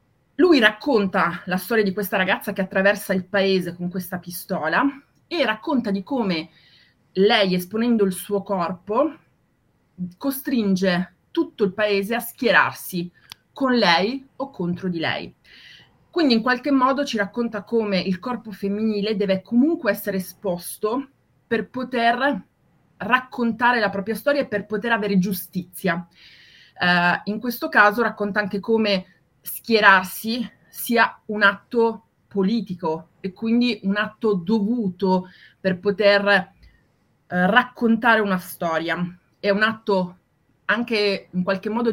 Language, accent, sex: Italian, native, female